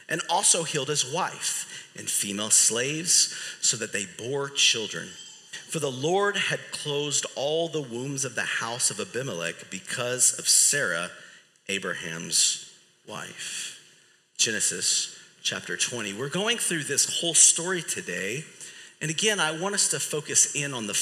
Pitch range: 135-180 Hz